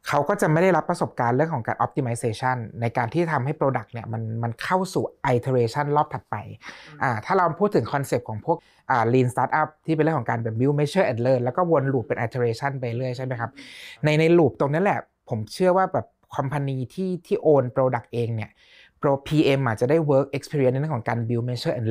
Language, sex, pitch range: Thai, male, 120-155 Hz